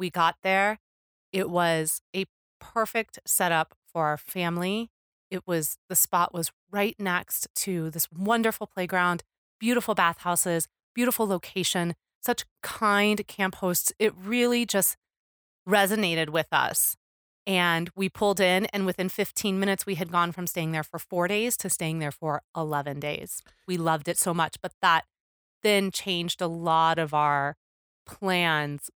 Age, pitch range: 30-49, 165-205 Hz